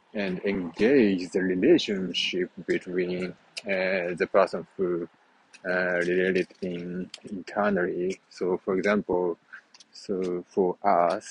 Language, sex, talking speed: English, male, 100 wpm